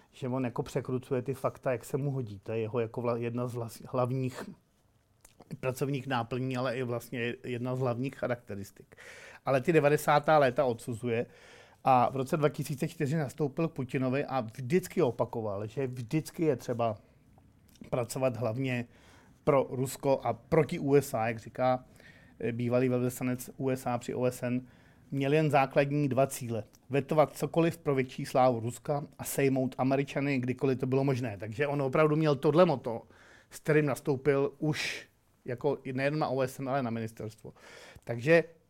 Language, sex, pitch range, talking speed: Czech, male, 125-145 Hz, 145 wpm